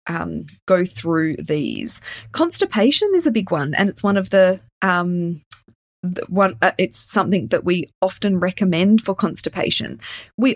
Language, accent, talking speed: English, Australian, 140 wpm